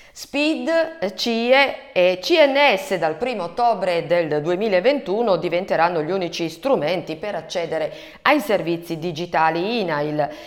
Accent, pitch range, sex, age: native, 175-245 Hz, female, 40-59